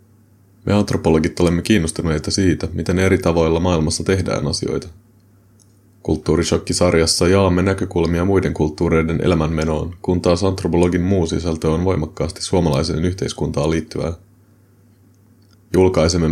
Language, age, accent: Finnish, 30-49, native